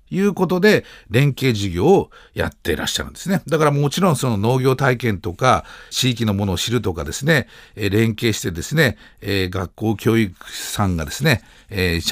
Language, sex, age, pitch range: Japanese, male, 50-69, 95-150 Hz